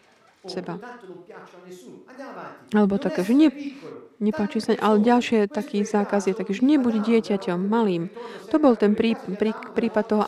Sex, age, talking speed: female, 30-49, 135 wpm